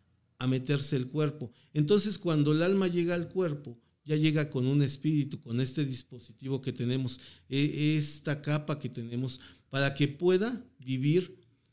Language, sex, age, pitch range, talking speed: Spanish, male, 40-59, 125-155 Hz, 150 wpm